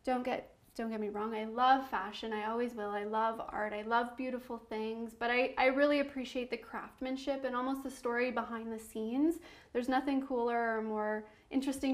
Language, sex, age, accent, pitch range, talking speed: English, female, 20-39, American, 225-265 Hz, 195 wpm